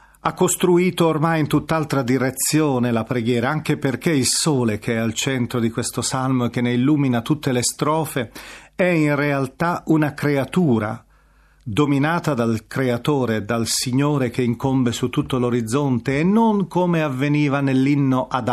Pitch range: 125-160 Hz